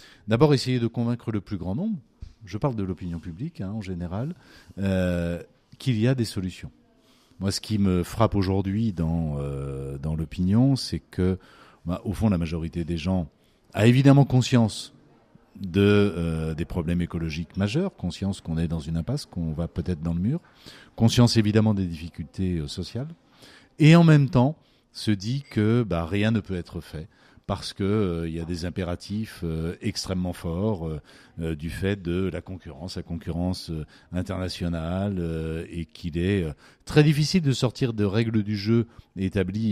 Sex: male